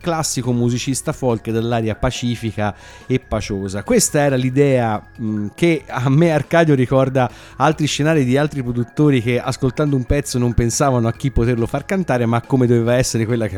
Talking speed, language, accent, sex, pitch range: 170 wpm, Italian, native, male, 105-135 Hz